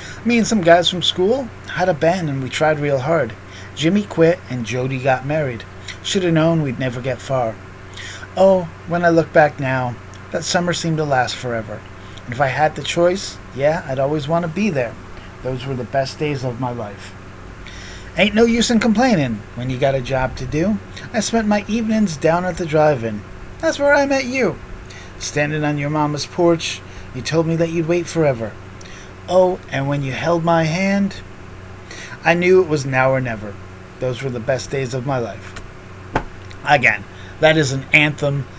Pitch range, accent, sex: 100-155 Hz, American, male